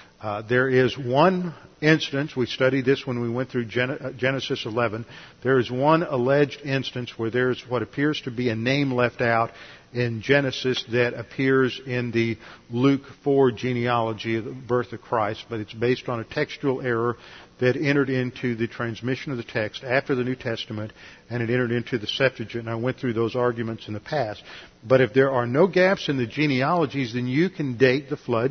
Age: 50-69